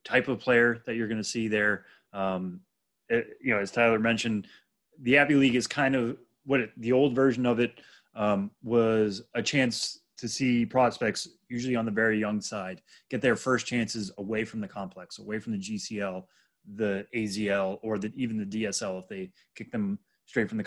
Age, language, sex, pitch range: 20-39, English, male, 105-130 Hz